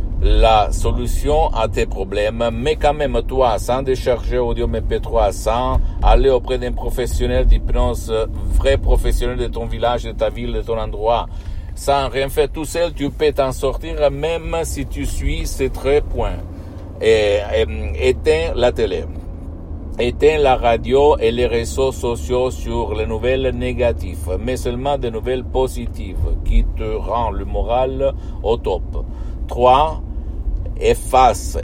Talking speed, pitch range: 140 wpm, 90-130 Hz